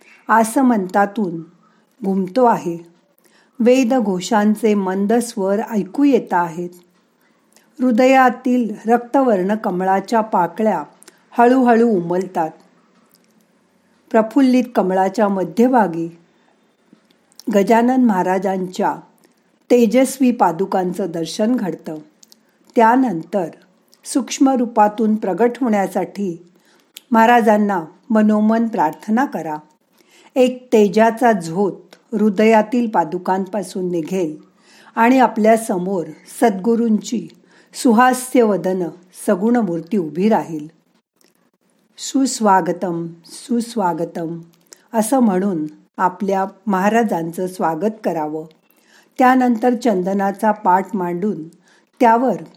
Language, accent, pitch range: Marathi, native, 185-235 Hz